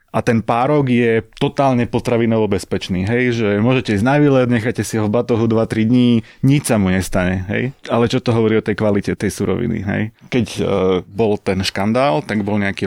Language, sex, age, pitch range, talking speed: Slovak, male, 30-49, 100-120 Hz, 195 wpm